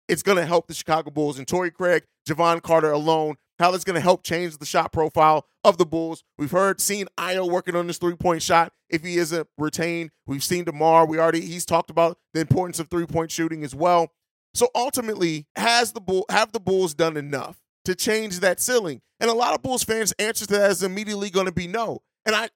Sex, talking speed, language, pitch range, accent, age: male, 215 wpm, English, 165-205 Hz, American, 30-49